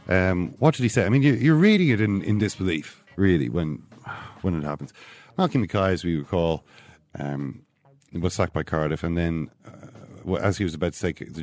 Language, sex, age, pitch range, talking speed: English, male, 40-59, 80-110 Hz, 210 wpm